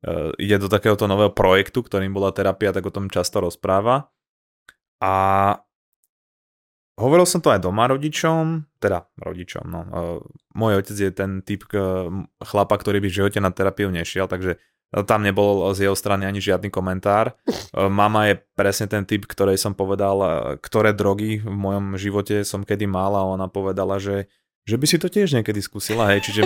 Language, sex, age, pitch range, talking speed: Slovak, male, 20-39, 95-105 Hz, 165 wpm